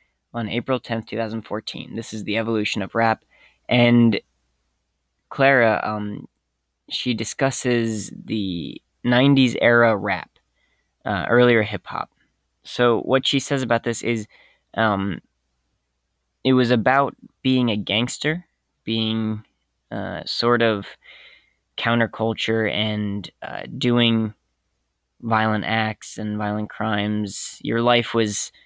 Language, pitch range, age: English, 105-120 Hz, 20-39